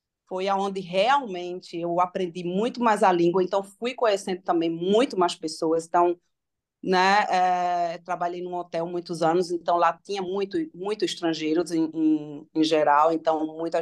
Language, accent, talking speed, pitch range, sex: Portuguese, Brazilian, 155 wpm, 170-205 Hz, female